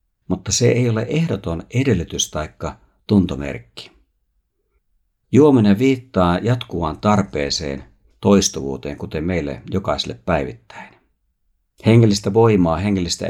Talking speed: 90 wpm